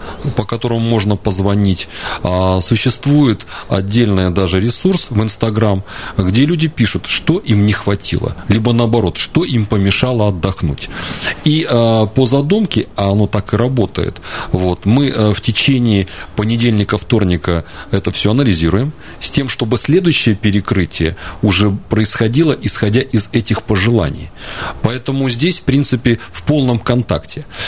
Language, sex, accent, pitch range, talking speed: Russian, male, native, 100-135 Hz, 130 wpm